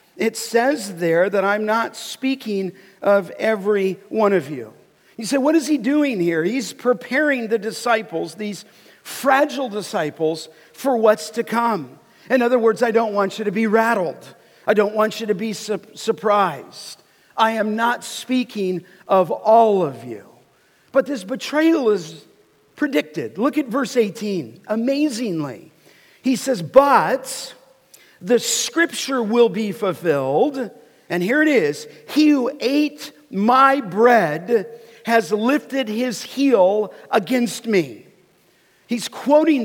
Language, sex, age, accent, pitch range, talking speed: English, male, 50-69, American, 205-255 Hz, 135 wpm